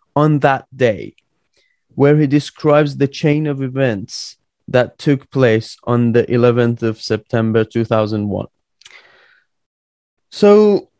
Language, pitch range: English, 125-150 Hz